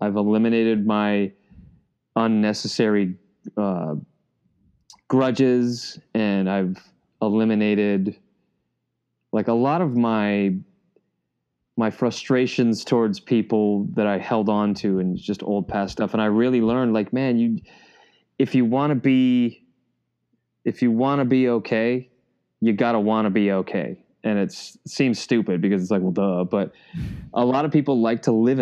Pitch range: 100-125 Hz